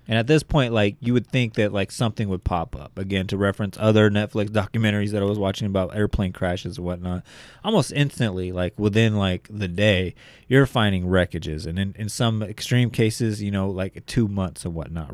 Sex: male